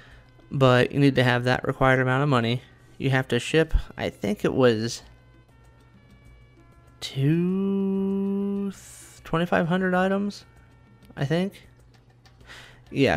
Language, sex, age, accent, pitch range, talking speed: English, male, 30-49, American, 120-140 Hz, 105 wpm